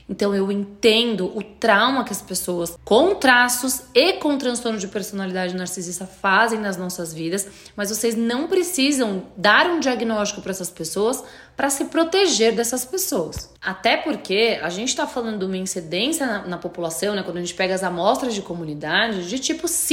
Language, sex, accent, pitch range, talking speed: Portuguese, female, Brazilian, 195-310 Hz, 175 wpm